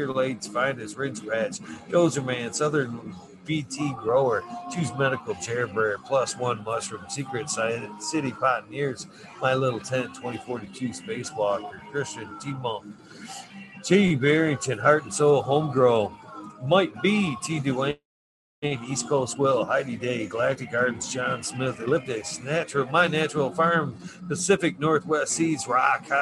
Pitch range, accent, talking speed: 120-150 Hz, American, 130 wpm